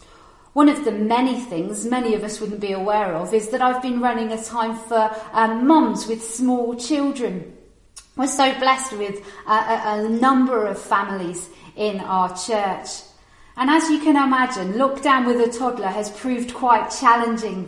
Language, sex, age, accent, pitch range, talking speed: English, female, 40-59, British, 200-240 Hz, 175 wpm